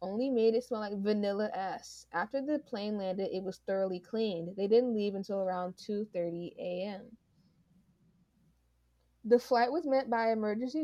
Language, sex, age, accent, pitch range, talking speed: English, female, 20-39, American, 185-235 Hz, 155 wpm